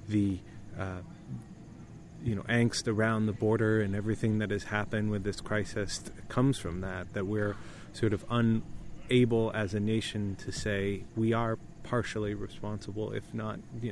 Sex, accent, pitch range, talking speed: male, American, 105-115 Hz, 155 wpm